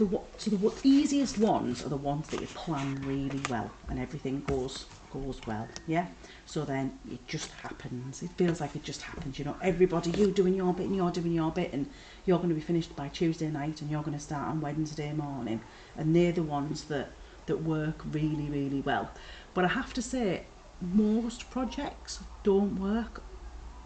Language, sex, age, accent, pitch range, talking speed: English, female, 40-59, British, 155-210 Hz, 190 wpm